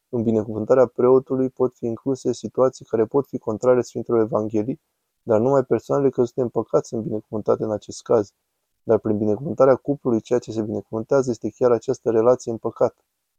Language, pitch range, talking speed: Romanian, 110-130 Hz, 165 wpm